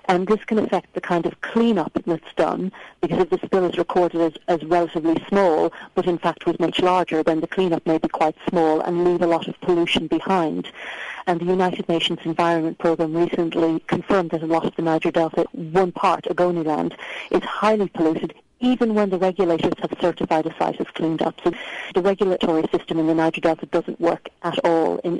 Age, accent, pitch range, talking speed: 40-59, British, 165-190 Hz, 200 wpm